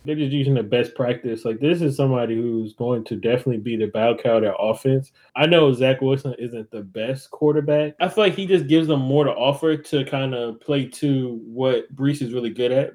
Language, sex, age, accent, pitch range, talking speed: English, male, 20-39, American, 115-140 Hz, 225 wpm